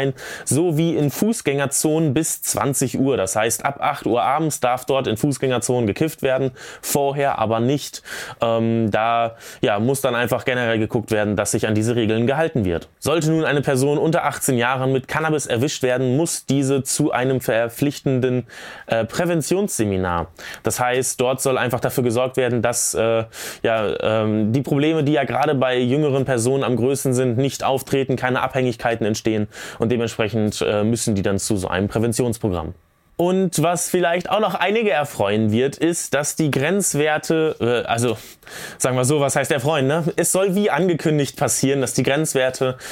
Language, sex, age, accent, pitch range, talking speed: German, male, 20-39, German, 115-145 Hz, 170 wpm